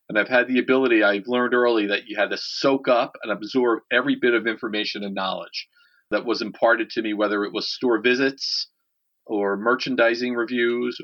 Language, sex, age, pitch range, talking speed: English, male, 40-59, 115-140 Hz, 190 wpm